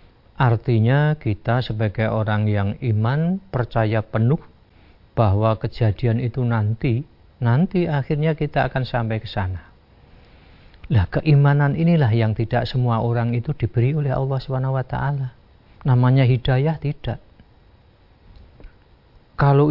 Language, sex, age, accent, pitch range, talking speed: Indonesian, male, 40-59, native, 105-135 Hz, 115 wpm